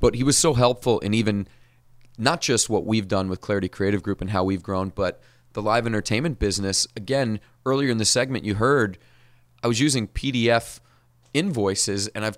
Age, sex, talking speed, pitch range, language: 30-49, male, 190 wpm, 105-130 Hz, English